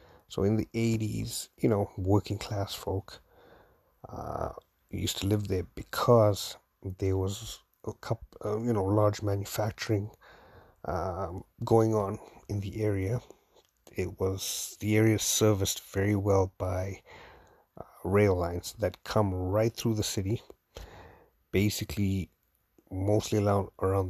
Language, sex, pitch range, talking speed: English, male, 95-105 Hz, 125 wpm